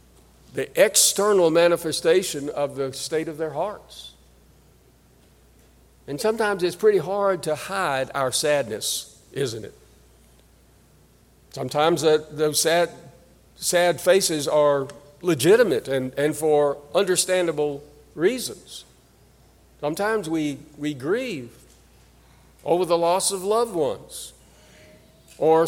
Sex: male